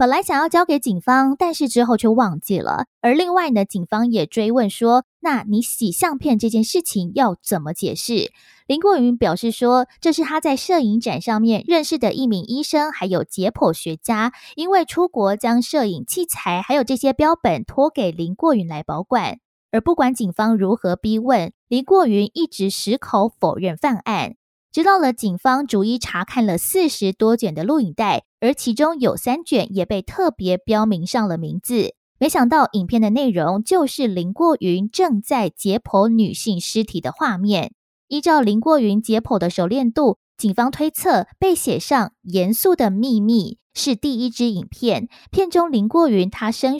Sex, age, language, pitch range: female, 20-39, Chinese, 200-275 Hz